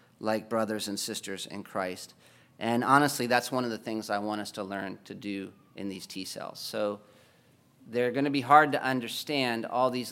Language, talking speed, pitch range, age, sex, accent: English, 200 wpm, 110-130 Hz, 40-59, male, American